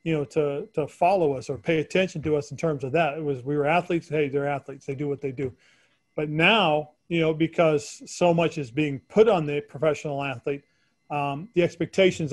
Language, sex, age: English, male, 40-59